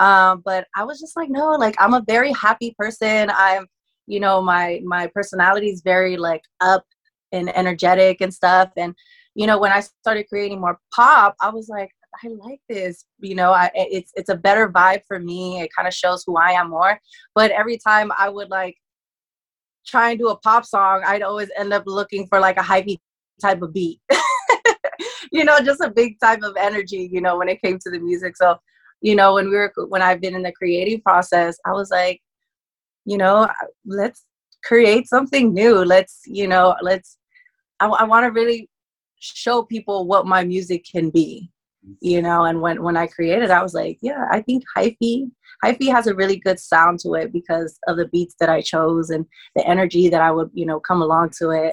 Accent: American